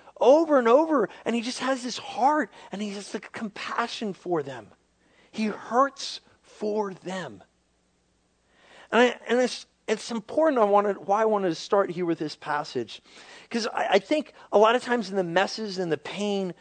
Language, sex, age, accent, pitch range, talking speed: English, male, 40-59, American, 150-220 Hz, 185 wpm